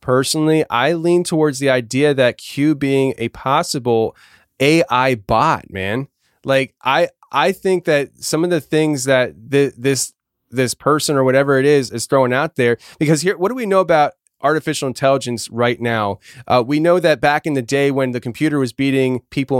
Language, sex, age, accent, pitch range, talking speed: English, male, 20-39, American, 125-155 Hz, 185 wpm